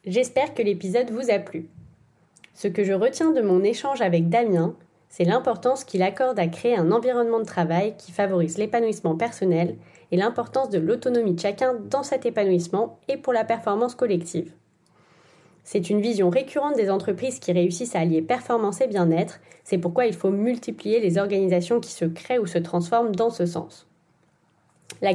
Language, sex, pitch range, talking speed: French, female, 175-240 Hz, 175 wpm